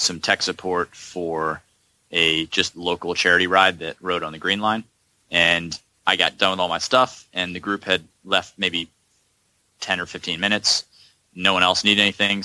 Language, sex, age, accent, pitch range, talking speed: English, male, 30-49, American, 85-105 Hz, 185 wpm